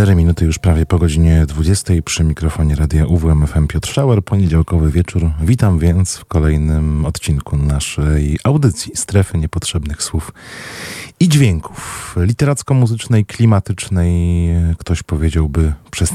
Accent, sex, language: native, male, Polish